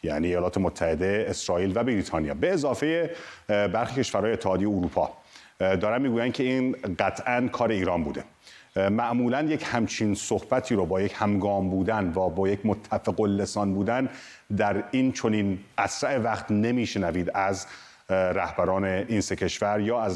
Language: Persian